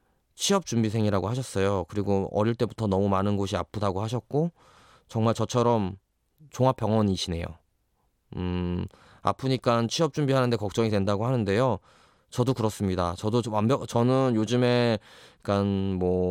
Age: 20-39